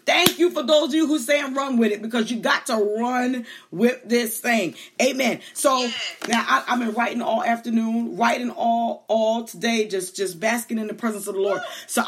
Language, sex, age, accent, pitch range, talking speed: English, female, 30-49, American, 220-280 Hz, 215 wpm